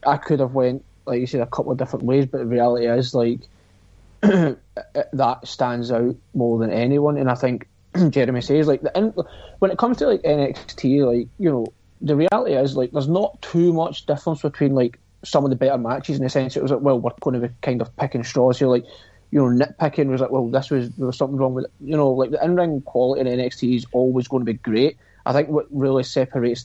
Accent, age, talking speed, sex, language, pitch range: British, 30-49, 235 wpm, male, English, 125-145 Hz